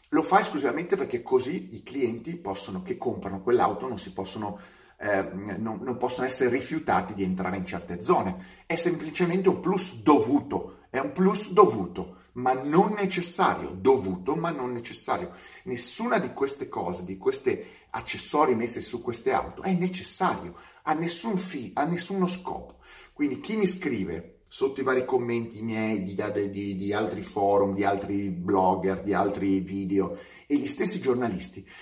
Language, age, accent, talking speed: Italian, 30-49, native, 160 wpm